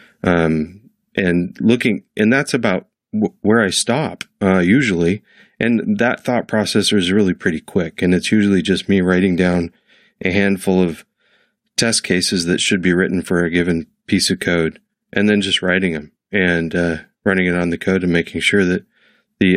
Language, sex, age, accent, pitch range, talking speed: English, male, 30-49, American, 90-110 Hz, 180 wpm